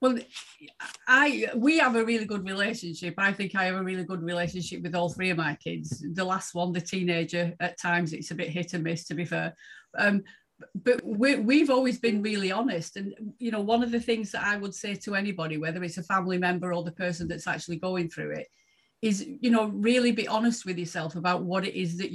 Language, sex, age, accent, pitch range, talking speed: English, female, 40-59, British, 175-210 Hz, 230 wpm